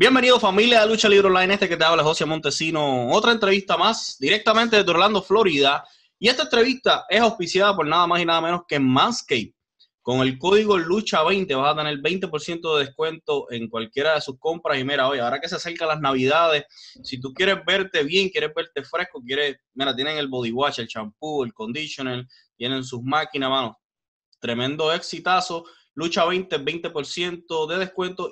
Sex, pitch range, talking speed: male, 130-185 Hz, 180 wpm